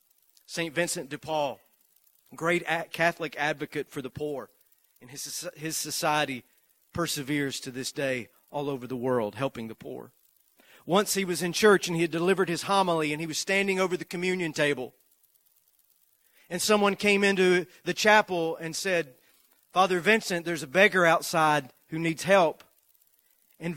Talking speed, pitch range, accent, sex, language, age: 155 wpm, 150-195 Hz, American, male, English, 40-59